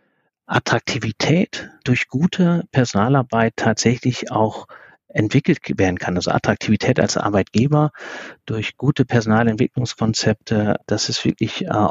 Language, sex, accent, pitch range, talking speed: German, male, German, 105-130 Hz, 100 wpm